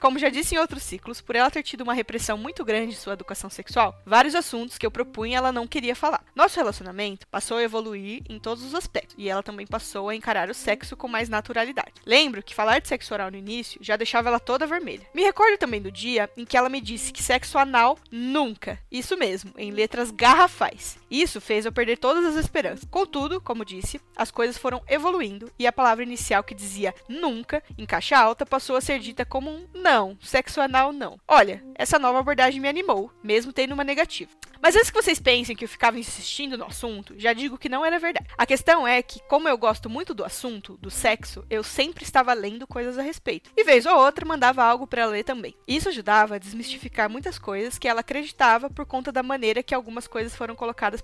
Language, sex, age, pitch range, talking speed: English, female, 20-39, 225-285 Hz, 220 wpm